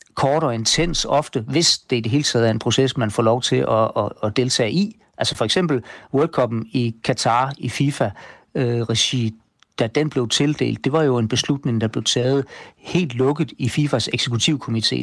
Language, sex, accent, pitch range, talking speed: Danish, male, native, 115-140 Hz, 195 wpm